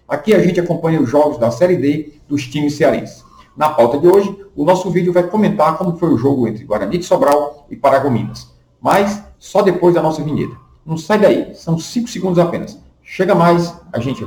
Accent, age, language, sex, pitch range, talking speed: Brazilian, 50-69, Portuguese, male, 125-185 Hz, 200 wpm